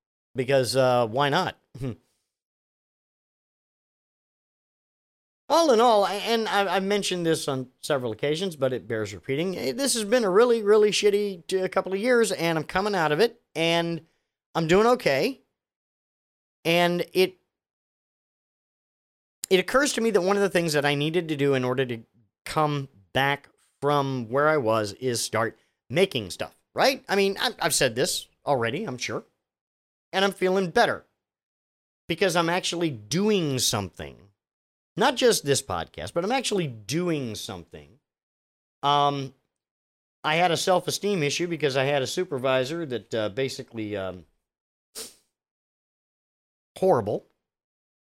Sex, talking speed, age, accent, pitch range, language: male, 135 wpm, 40-59, American, 125-185 Hz, English